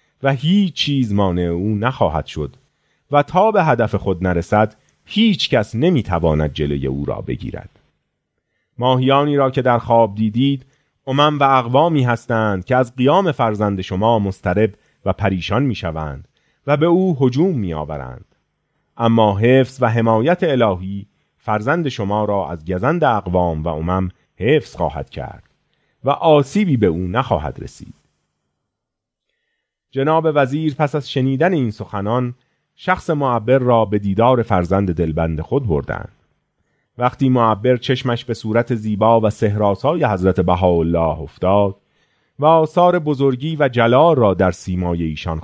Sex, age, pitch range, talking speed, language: male, 40-59, 95-135 Hz, 135 wpm, Persian